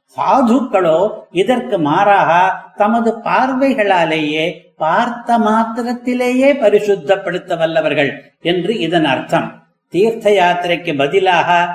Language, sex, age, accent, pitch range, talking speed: Tamil, male, 60-79, native, 180-220 Hz, 75 wpm